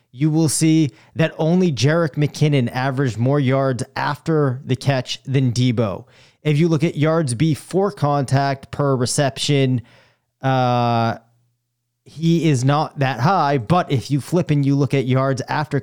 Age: 30-49